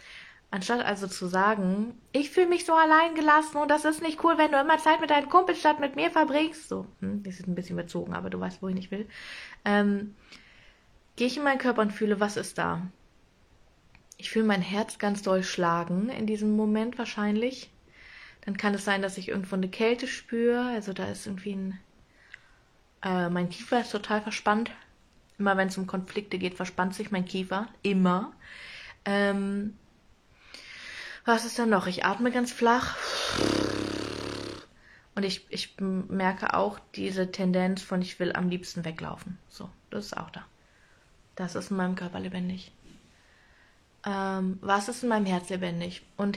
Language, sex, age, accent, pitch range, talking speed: German, female, 20-39, German, 190-245 Hz, 175 wpm